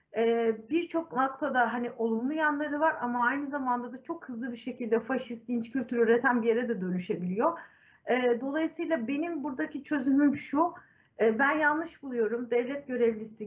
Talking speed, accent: 150 wpm, native